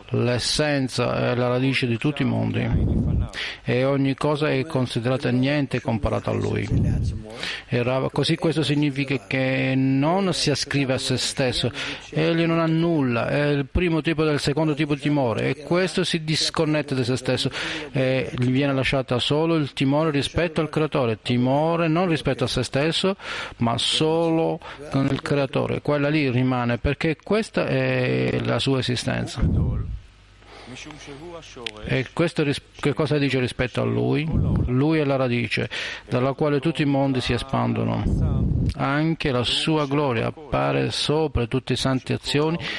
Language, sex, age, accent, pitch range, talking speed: Italian, male, 40-59, native, 120-145 Hz, 150 wpm